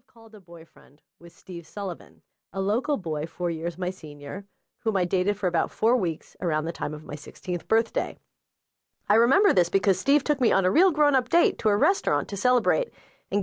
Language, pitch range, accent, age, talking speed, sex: English, 175-260 Hz, American, 30-49, 200 wpm, female